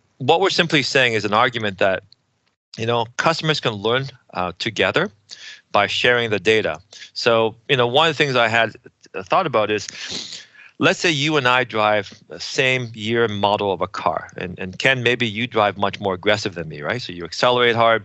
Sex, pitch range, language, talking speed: male, 105-130 Hz, English, 200 wpm